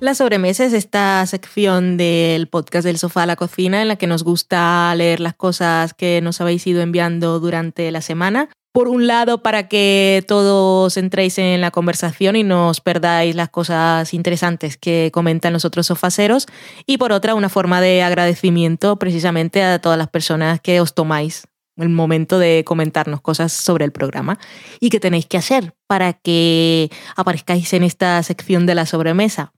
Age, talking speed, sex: 20-39, 175 wpm, female